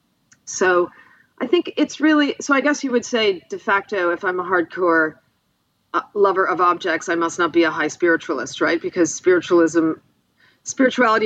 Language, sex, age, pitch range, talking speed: English, female, 40-59, 165-250 Hz, 165 wpm